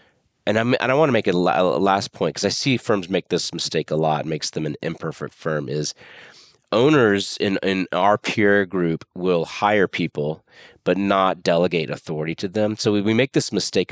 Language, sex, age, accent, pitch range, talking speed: English, male, 30-49, American, 80-100 Hz, 200 wpm